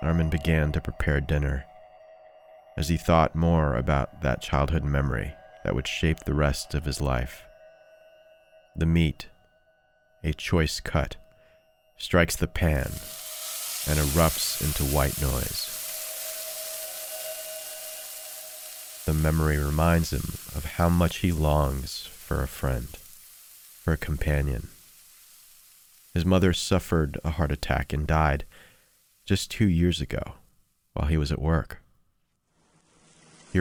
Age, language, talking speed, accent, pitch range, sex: 30-49, English, 120 wpm, American, 75-90 Hz, male